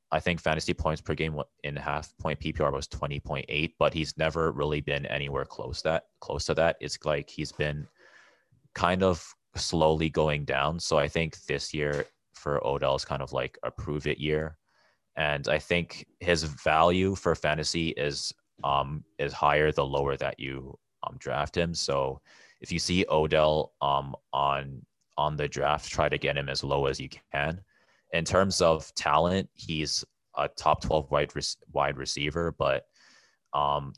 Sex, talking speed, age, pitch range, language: male, 170 wpm, 30-49, 70-80 Hz, English